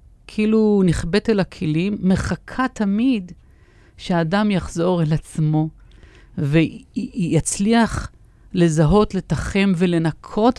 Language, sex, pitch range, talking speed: English, female, 160-210 Hz, 75 wpm